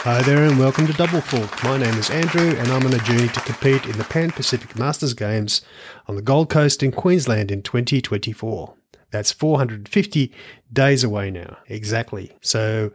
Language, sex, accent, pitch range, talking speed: English, male, Australian, 110-135 Hz, 180 wpm